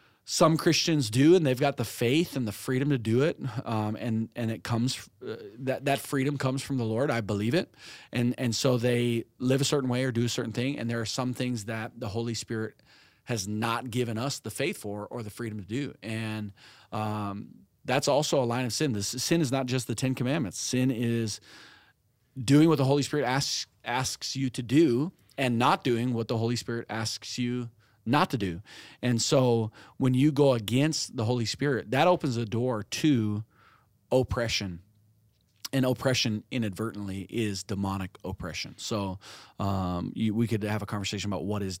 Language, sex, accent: English, male, American